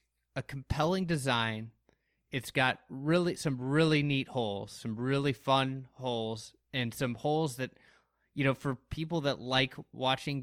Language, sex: English, male